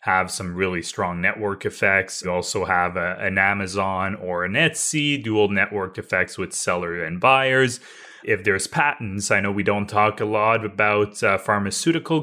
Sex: male